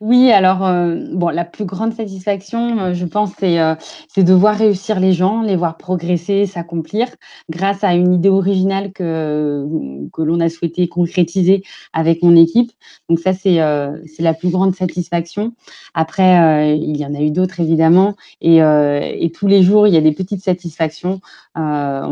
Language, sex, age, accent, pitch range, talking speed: French, female, 20-39, French, 160-190 Hz, 185 wpm